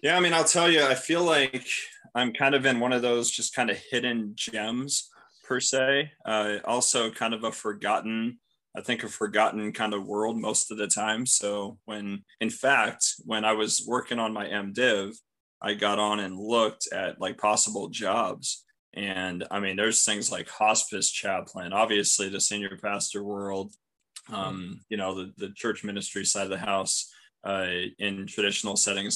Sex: male